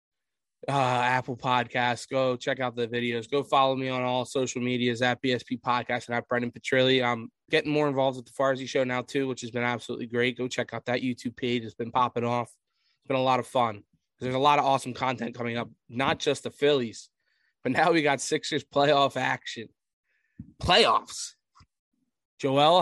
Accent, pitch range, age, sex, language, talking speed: American, 120-140 Hz, 20-39, male, English, 195 wpm